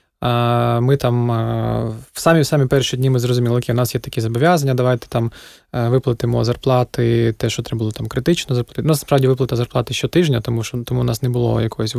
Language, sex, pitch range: Ukrainian, male, 115-130 Hz